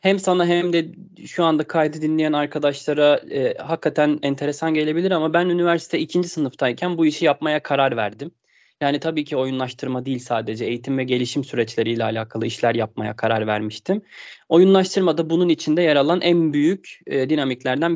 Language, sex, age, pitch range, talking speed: Turkish, male, 20-39, 135-175 Hz, 160 wpm